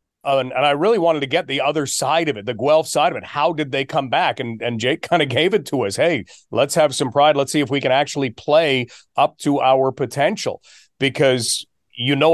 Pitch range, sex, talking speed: 130-160 Hz, male, 250 wpm